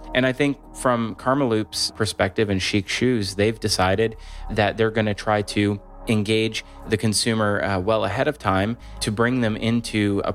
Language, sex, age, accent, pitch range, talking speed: English, male, 20-39, American, 95-115 Hz, 180 wpm